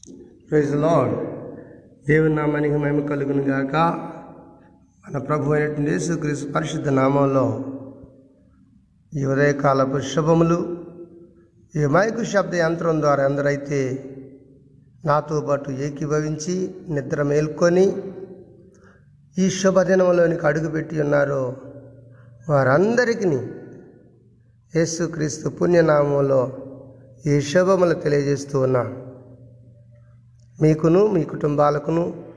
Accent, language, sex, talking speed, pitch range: native, Telugu, male, 70 wpm, 135-170 Hz